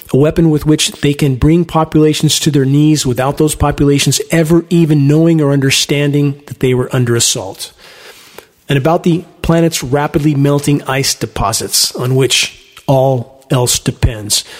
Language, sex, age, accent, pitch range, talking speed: English, male, 40-59, American, 135-165 Hz, 150 wpm